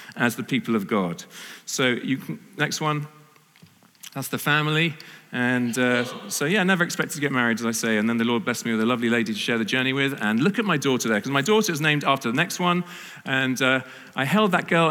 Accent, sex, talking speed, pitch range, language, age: British, male, 245 wpm, 145-200 Hz, English, 40-59